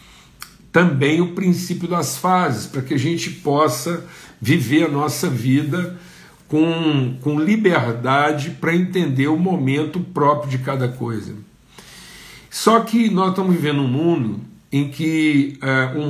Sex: male